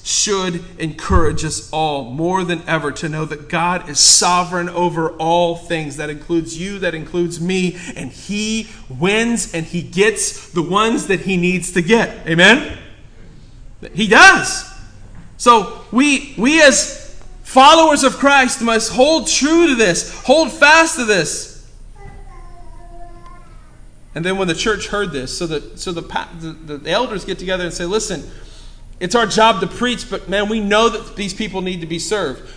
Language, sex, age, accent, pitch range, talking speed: English, male, 30-49, American, 155-210 Hz, 165 wpm